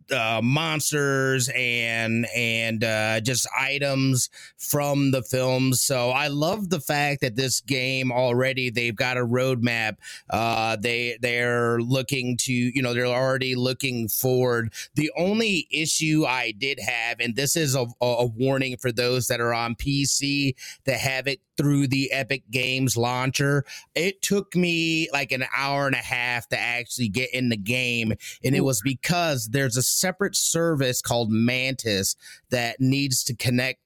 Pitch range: 120-140 Hz